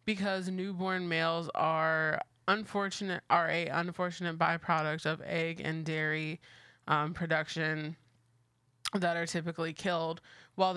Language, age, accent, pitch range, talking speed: English, 20-39, American, 160-195 Hz, 110 wpm